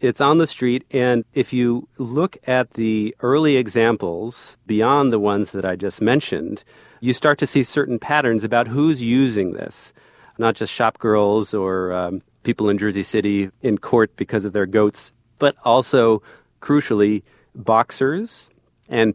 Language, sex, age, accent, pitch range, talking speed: English, male, 40-59, American, 105-125 Hz, 155 wpm